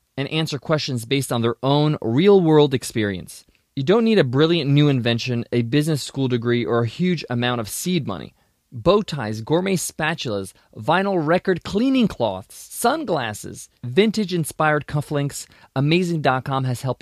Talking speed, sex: 145 wpm, male